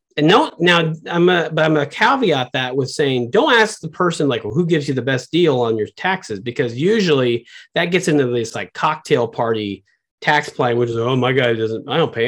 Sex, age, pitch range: male, 40-59, 135-185 Hz